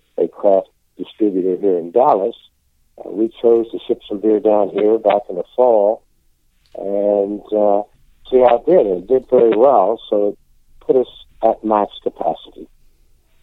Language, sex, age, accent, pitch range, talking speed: English, male, 60-79, American, 90-110 Hz, 165 wpm